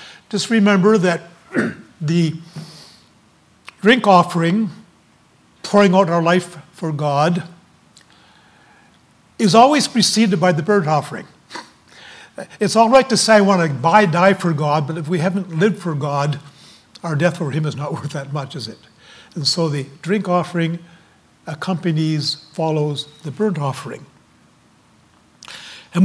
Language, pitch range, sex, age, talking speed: English, 160-195 Hz, male, 60-79, 140 wpm